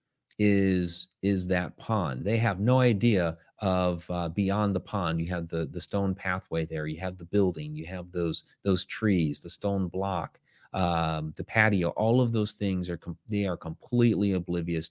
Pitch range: 85-105 Hz